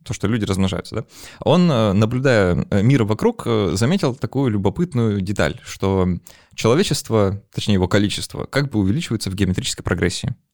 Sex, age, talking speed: male, 20-39, 135 wpm